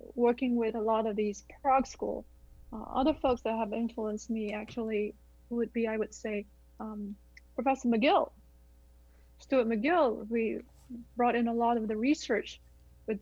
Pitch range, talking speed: 205-250 Hz, 160 wpm